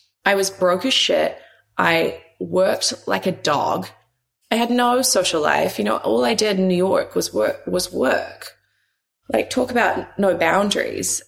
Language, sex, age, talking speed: English, female, 20-39, 170 wpm